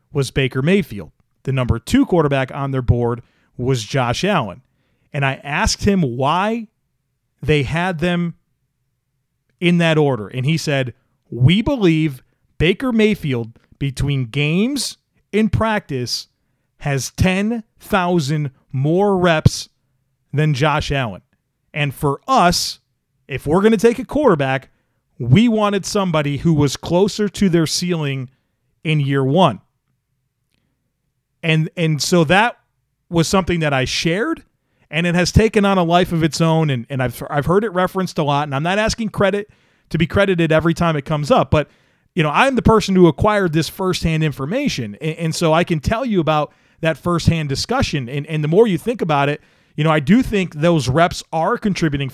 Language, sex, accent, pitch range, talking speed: English, male, American, 135-175 Hz, 165 wpm